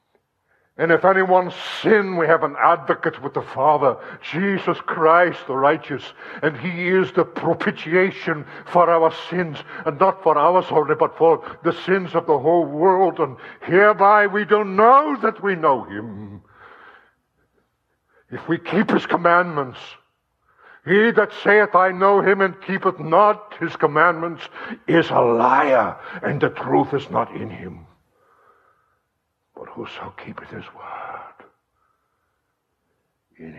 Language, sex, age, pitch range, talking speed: English, male, 60-79, 160-210 Hz, 140 wpm